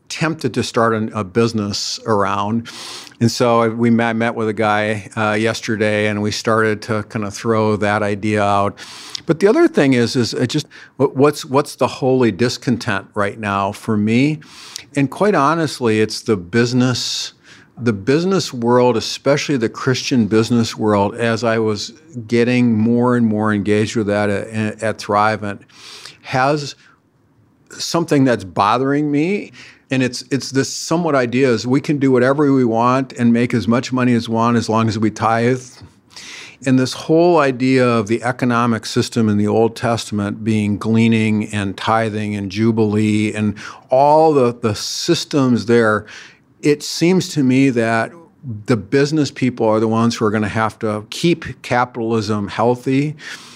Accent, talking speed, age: American, 160 wpm, 50-69